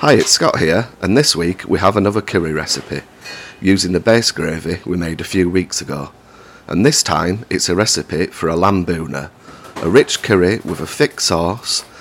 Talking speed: 195 wpm